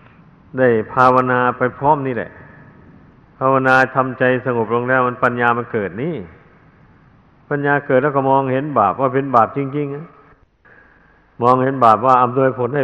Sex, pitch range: male, 115-130 Hz